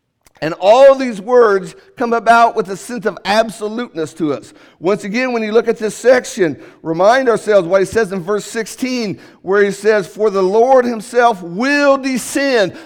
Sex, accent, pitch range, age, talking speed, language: male, American, 195-255 Hz, 50-69, 175 wpm, English